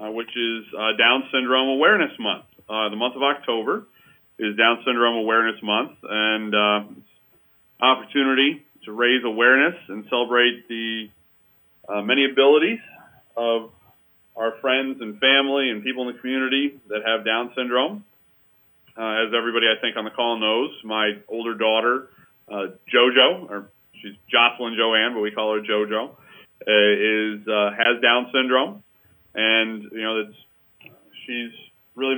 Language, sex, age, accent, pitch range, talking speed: English, male, 30-49, American, 110-125 Hz, 145 wpm